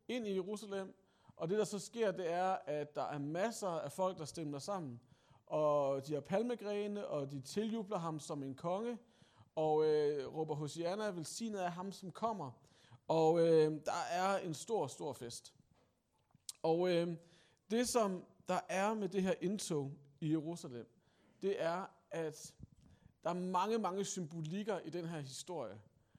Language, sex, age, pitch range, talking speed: Danish, male, 40-59, 155-200 Hz, 165 wpm